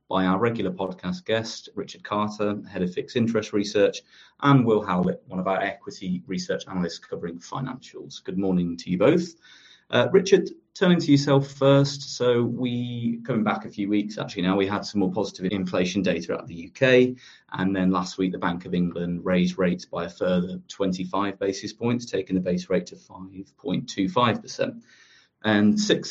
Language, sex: English, male